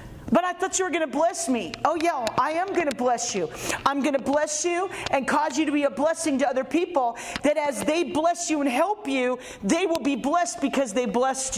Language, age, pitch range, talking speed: English, 40-59, 225-300 Hz, 245 wpm